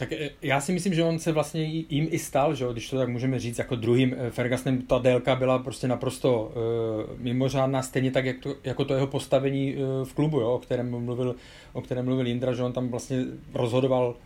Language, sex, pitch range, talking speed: Czech, male, 125-140 Hz, 210 wpm